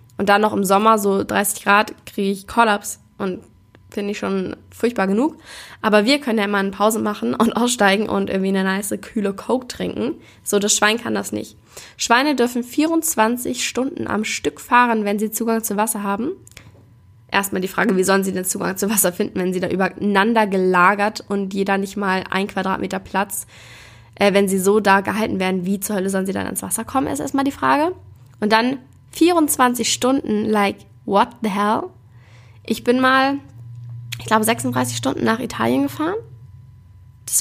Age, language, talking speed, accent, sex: 10-29, German, 185 wpm, German, female